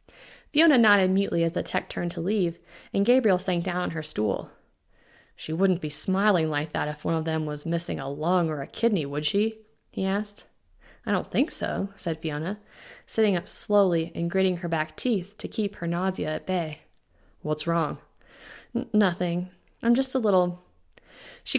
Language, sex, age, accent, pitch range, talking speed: English, female, 20-39, American, 165-215 Hz, 180 wpm